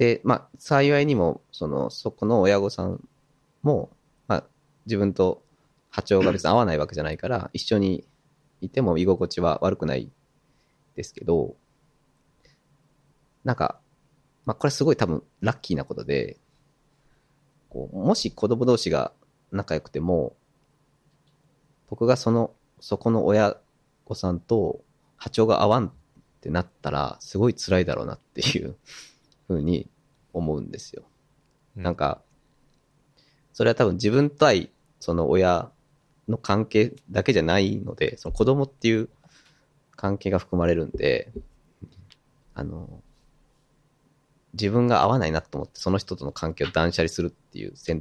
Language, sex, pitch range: Japanese, male, 100-145 Hz